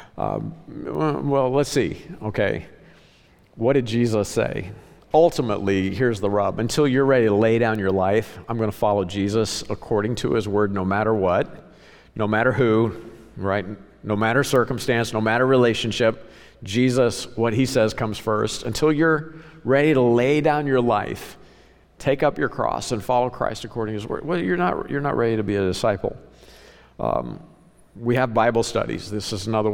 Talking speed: 170 wpm